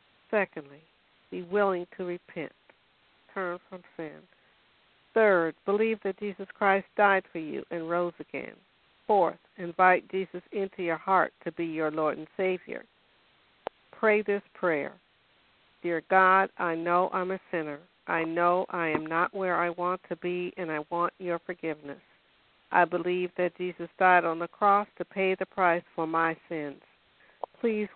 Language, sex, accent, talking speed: English, female, American, 155 wpm